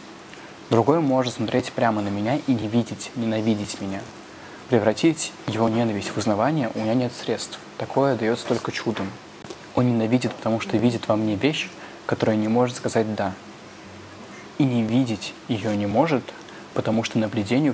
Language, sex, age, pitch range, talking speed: Russian, male, 20-39, 110-130 Hz, 155 wpm